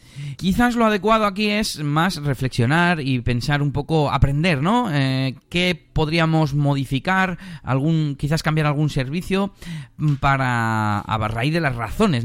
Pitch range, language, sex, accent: 125-165 Hz, Spanish, male, Spanish